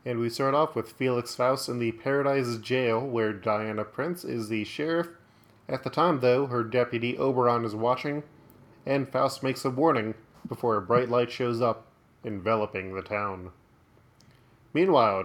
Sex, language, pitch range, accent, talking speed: male, English, 115-135 Hz, American, 160 wpm